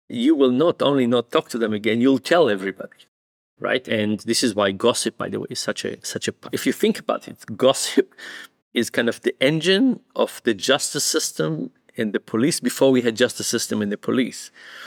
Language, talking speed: English, 210 wpm